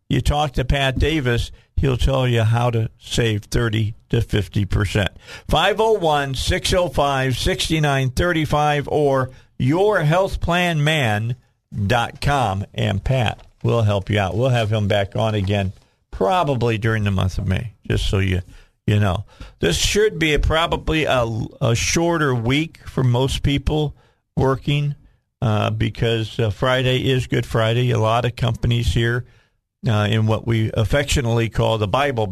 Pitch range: 110-140 Hz